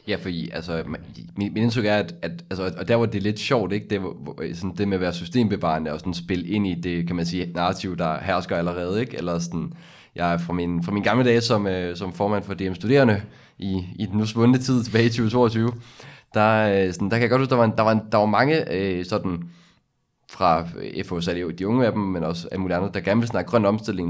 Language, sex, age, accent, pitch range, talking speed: Danish, male, 20-39, native, 90-110 Hz, 255 wpm